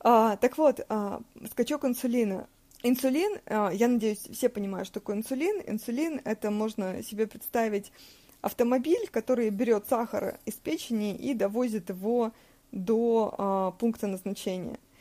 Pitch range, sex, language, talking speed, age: 205-250 Hz, female, Russian, 115 wpm, 20-39